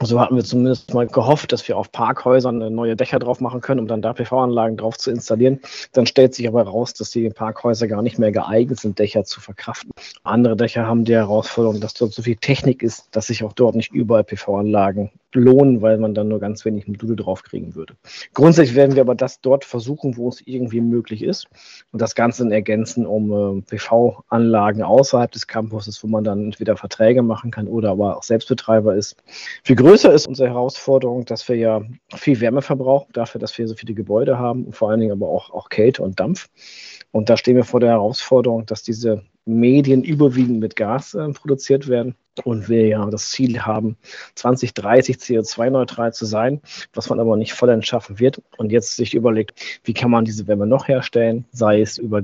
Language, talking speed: German, 205 wpm